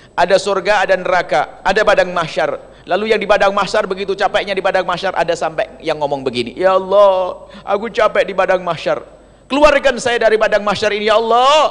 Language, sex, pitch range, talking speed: Indonesian, male, 145-225 Hz, 190 wpm